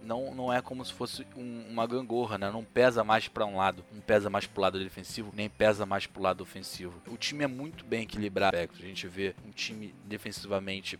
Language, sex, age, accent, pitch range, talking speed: Portuguese, male, 20-39, Brazilian, 100-120 Hz, 230 wpm